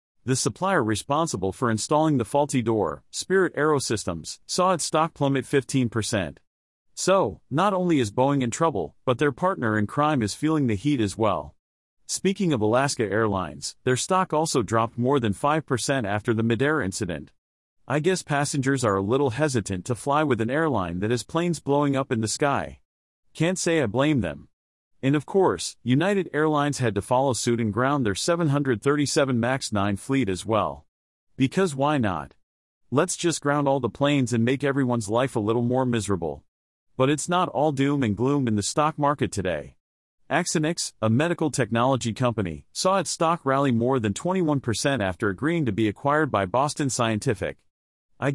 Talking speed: 180 wpm